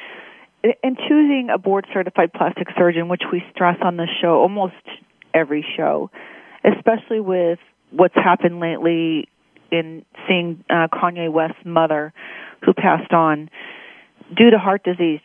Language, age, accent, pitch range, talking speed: English, 40-59, American, 155-185 Hz, 130 wpm